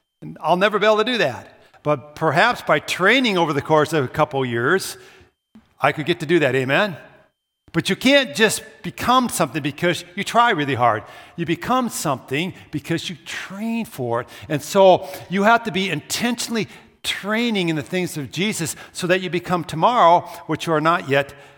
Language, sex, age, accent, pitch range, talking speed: English, male, 60-79, American, 140-185 Hz, 185 wpm